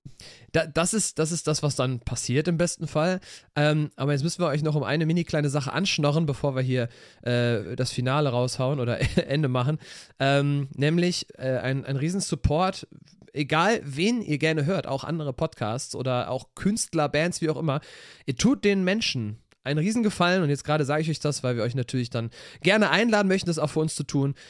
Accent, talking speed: German, 205 wpm